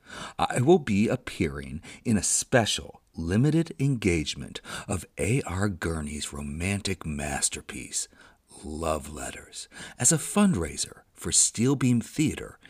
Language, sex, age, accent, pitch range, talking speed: English, male, 50-69, American, 90-130 Hz, 110 wpm